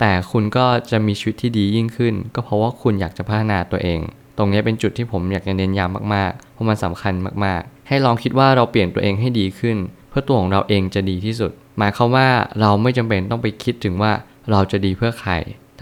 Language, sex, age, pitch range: Thai, male, 20-39, 100-120 Hz